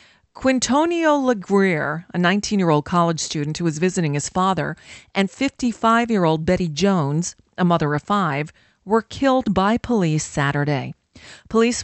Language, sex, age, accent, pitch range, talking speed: English, female, 40-59, American, 150-195 Hz, 125 wpm